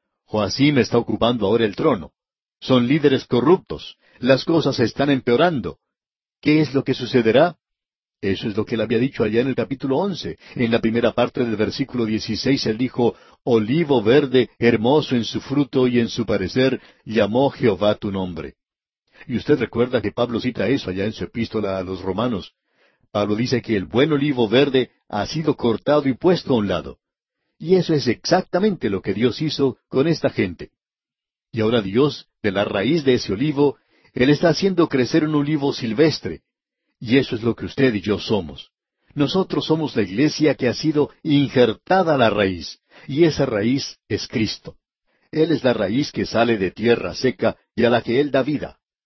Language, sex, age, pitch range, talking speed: English, male, 60-79, 110-145 Hz, 185 wpm